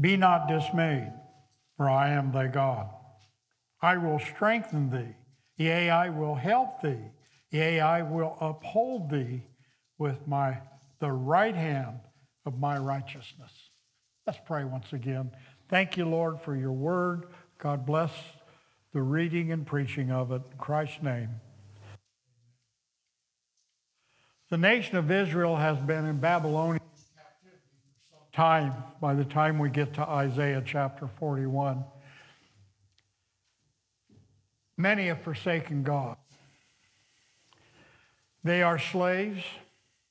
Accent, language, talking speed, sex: American, English, 115 wpm, male